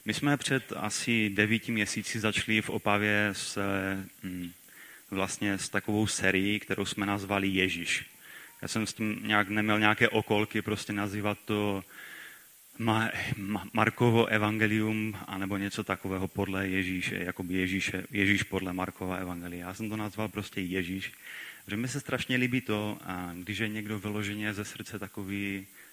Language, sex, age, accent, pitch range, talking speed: Czech, male, 30-49, native, 95-110 Hz, 140 wpm